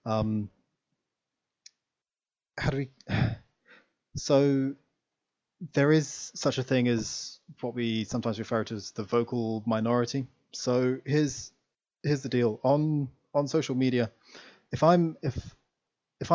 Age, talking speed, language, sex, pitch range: 20-39, 120 wpm, English, male, 110-130 Hz